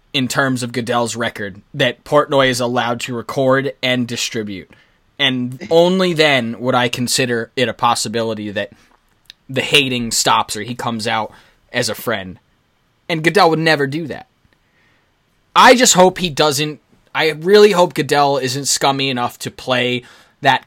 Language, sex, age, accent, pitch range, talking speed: English, male, 20-39, American, 125-160 Hz, 155 wpm